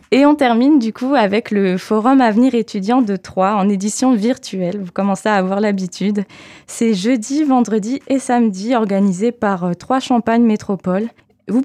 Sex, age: female, 20-39